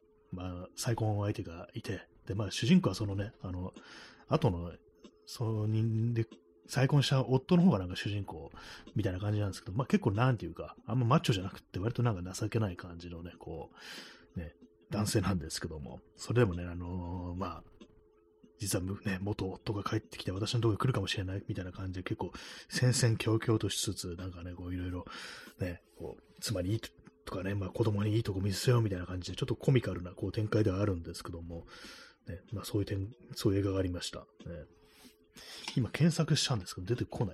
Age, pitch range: 30-49, 85-115 Hz